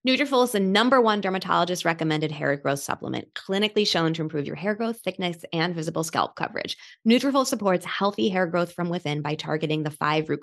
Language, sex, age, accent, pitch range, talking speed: English, female, 20-39, American, 140-185 Hz, 195 wpm